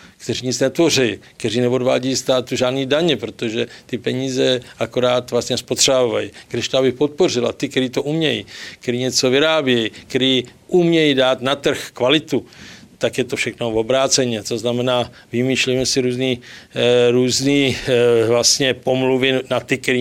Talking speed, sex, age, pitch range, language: 140 wpm, male, 50-69, 120-140 Hz, Czech